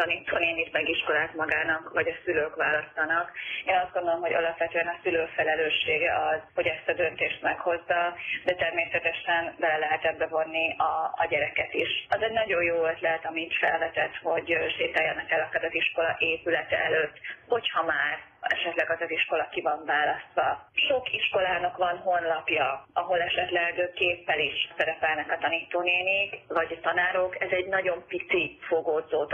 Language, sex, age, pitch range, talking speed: Hungarian, female, 30-49, 165-185 Hz, 155 wpm